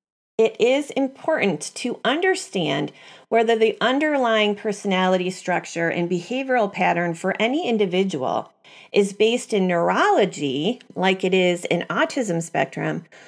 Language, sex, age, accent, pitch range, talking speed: English, female, 40-59, American, 180-230 Hz, 120 wpm